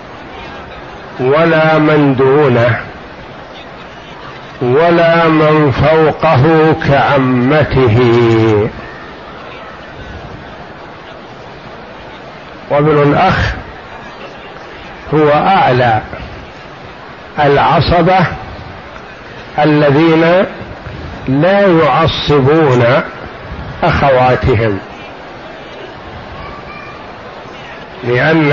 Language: Arabic